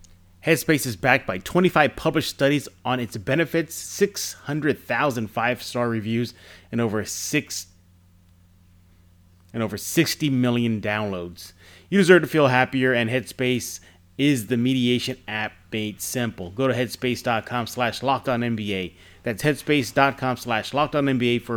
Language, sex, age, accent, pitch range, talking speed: English, male, 30-49, American, 105-135 Hz, 115 wpm